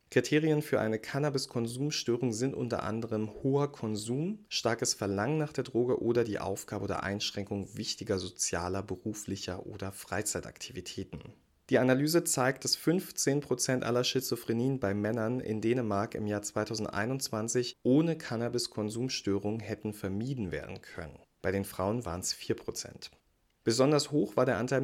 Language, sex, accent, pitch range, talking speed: German, male, German, 105-130 Hz, 135 wpm